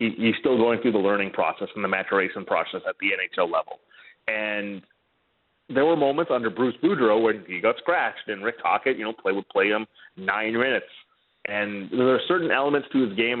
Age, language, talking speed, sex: 30-49, English, 200 wpm, male